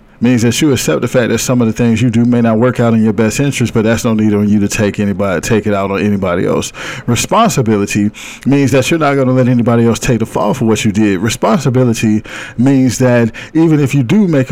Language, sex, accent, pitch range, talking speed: English, male, American, 110-130 Hz, 250 wpm